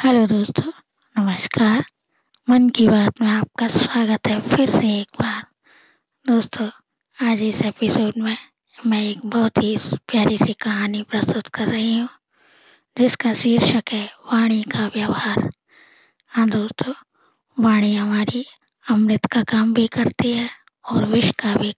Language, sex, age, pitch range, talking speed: Hindi, female, 20-39, 215-235 Hz, 140 wpm